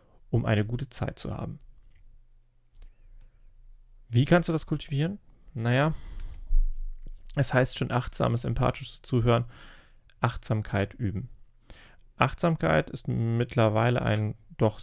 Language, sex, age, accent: German, male, 30-49, German